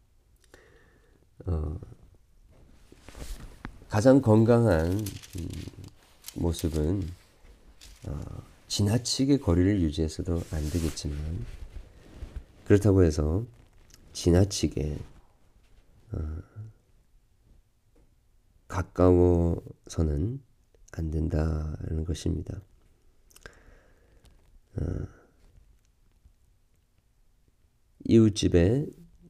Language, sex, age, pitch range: Korean, male, 40-59, 80-100 Hz